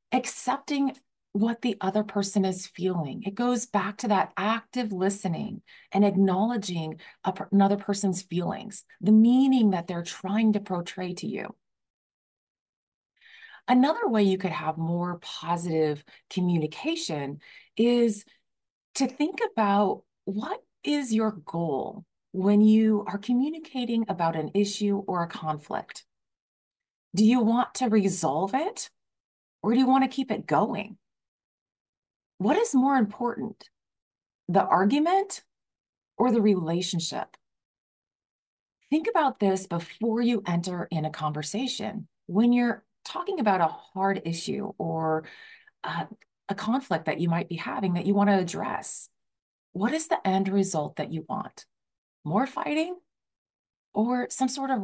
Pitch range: 185-245 Hz